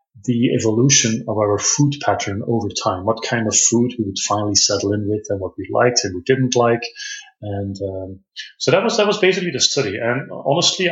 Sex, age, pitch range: male, 30-49, 110-155 Hz